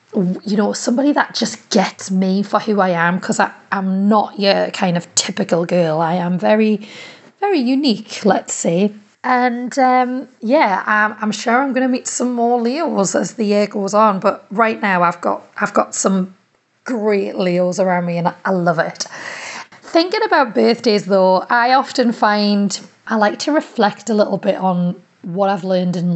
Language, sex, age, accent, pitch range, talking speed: English, female, 30-49, British, 185-235 Hz, 185 wpm